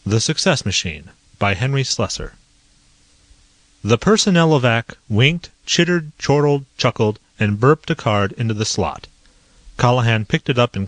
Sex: male